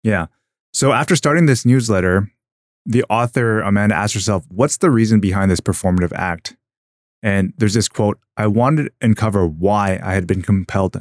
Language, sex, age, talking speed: English, male, 20-39, 170 wpm